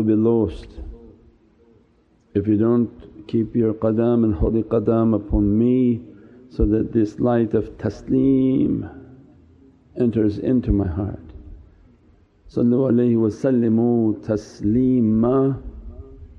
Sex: male